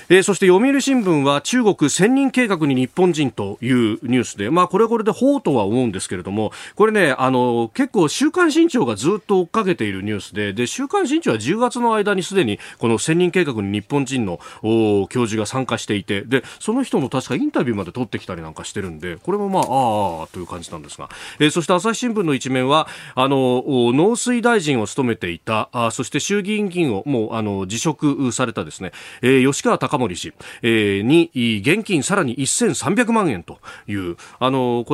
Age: 40-59